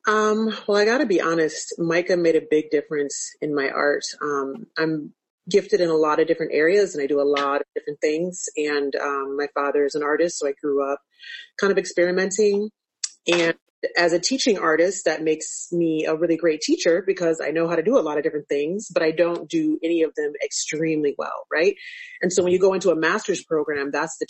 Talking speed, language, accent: 220 wpm, English, American